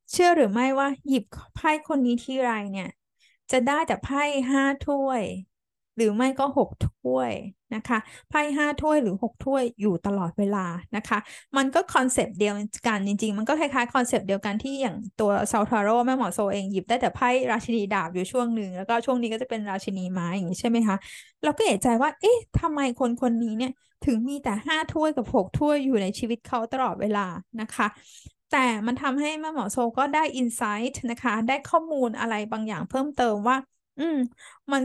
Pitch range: 215-275 Hz